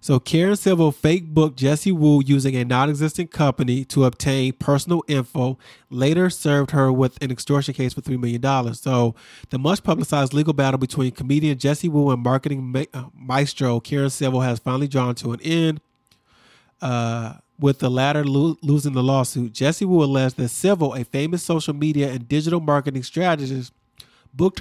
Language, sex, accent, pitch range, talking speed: English, male, American, 130-155 Hz, 165 wpm